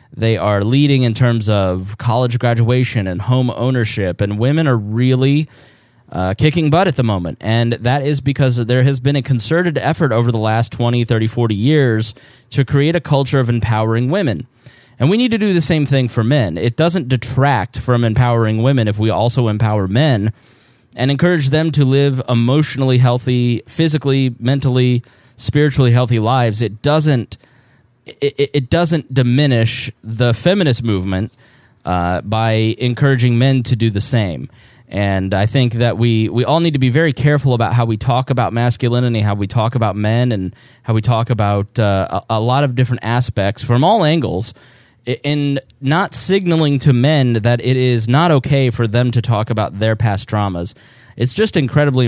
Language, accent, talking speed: English, American, 175 wpm